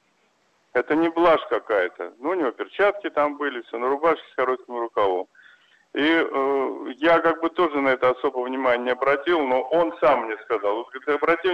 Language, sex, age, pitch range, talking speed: Russian, male, 50-69, 140-200 Hz, 180 wpm